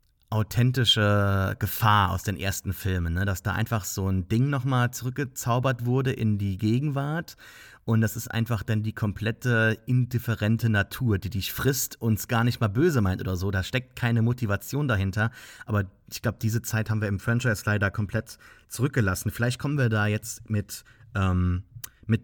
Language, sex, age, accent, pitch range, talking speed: English, male, 30-49, German, 105-130 Hz, 170 wpm